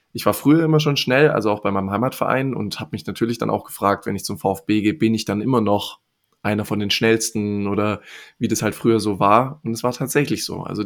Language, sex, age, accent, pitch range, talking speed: German, male, 20-39, German, 105-120 Hz, 250 wpm